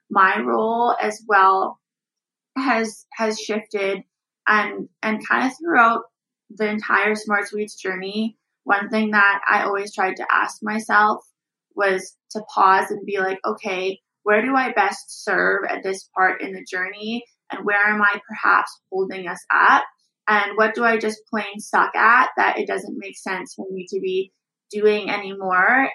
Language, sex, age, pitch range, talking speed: English, female, 20-39, 195-220 Hz, 165 wpm